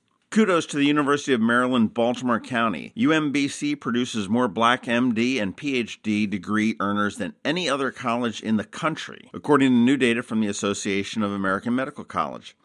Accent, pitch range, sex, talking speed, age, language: American, 105-125 Hz, male, 165 wpm, 50-69, English